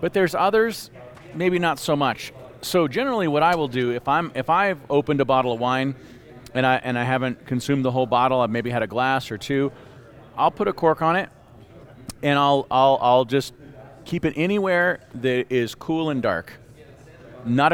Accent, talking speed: American, 195 wpm